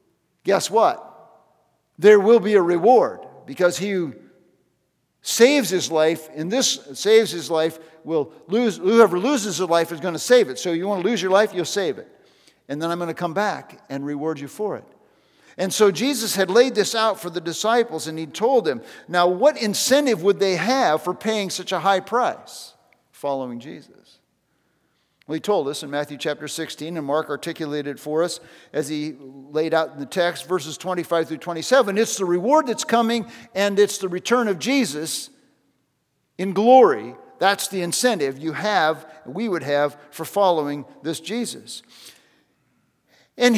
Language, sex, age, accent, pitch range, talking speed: English, male, 50-69, American, 160-220 Hz, 180 wpm